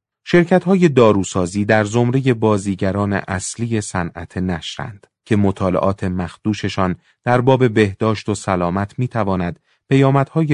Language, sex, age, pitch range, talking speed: Persian, male, 40-59, 95-115 Hz, 100 wpm